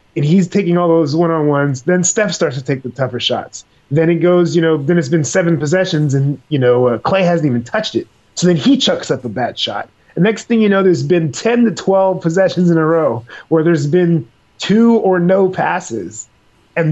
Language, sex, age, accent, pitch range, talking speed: English, male, 30-49, American, 140-180 Hz, 225 wpm